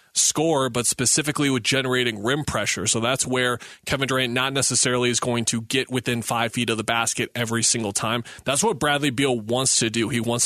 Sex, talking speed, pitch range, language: male, 205 wpm, 120-145 Hz, English